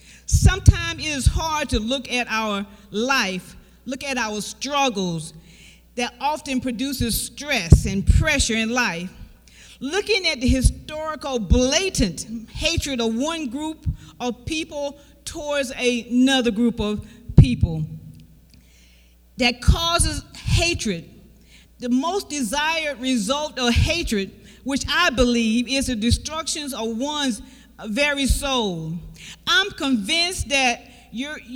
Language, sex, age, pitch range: English, female, 40-59, 225-295 Hz